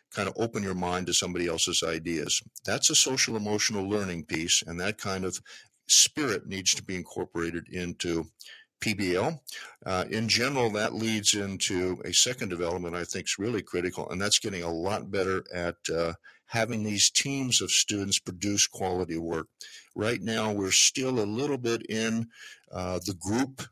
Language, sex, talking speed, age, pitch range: English, male, 170 wpm, 50-69, 95-110 Hz